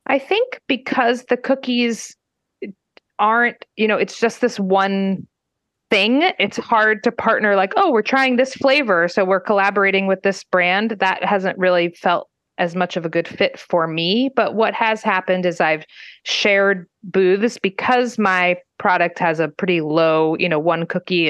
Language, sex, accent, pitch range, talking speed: English, female, American, 165-210 Hz, 170 wpm